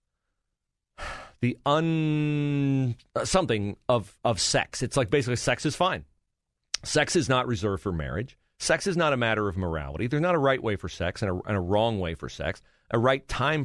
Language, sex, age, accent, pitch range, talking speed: English, male, 40-59, American, 90-125 Hz, 190 wpm